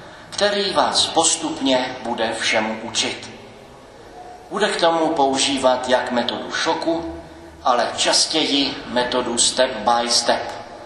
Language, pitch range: Czech, 120-160 Hz